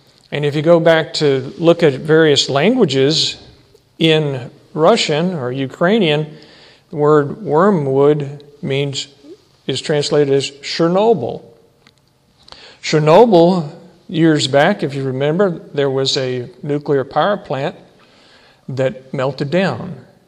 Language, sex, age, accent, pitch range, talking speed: English, male, 50-69, American, 135-165 Hz, 110 wpm